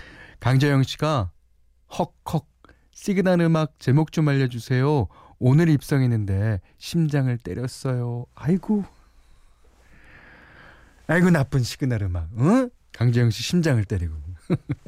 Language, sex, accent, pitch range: Korean, male, native, 90-140 Hz